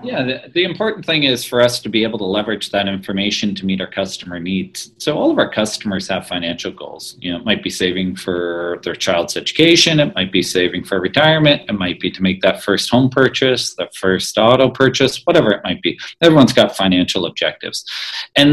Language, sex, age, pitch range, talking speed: English, male, 40-59, 95-125 Hz, 210 wpm